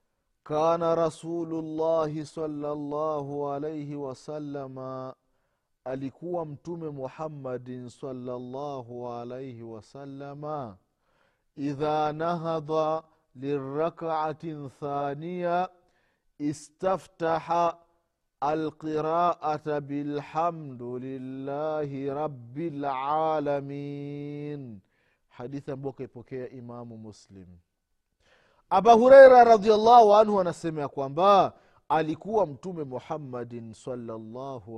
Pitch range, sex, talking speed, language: 120-160 Hz, male, 65 wpm, Swahili